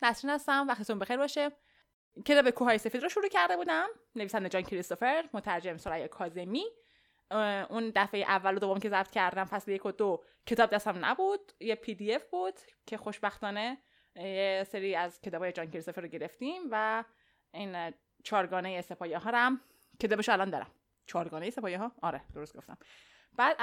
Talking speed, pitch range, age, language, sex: 165 wpm, 190-280 Hz, 20-39, Persian, female